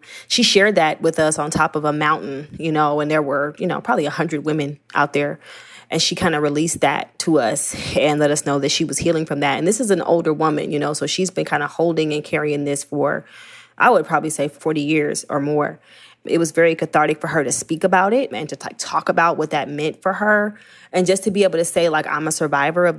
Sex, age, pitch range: female, 20-39, 150-175 Hz